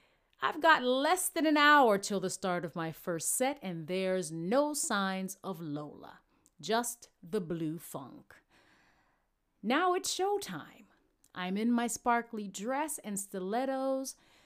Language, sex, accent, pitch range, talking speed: Ukrainian, female, American, 175-255 Hz, 135 wpm